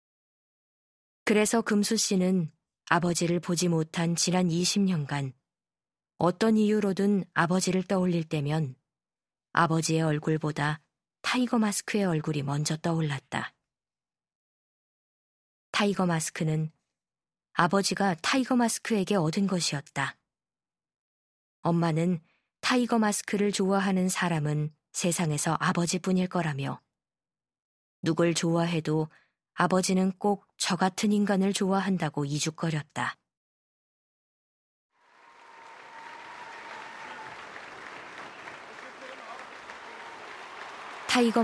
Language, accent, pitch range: Korean, native, 160-205 Hz